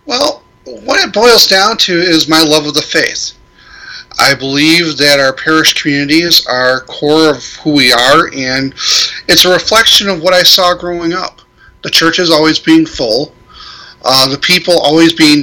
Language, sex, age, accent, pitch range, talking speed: English, male, 30-49, American, 145-170 Hz, 170 wpm